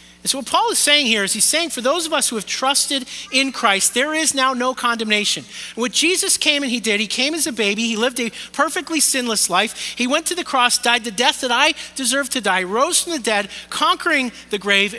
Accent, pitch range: American, 205-280 Hz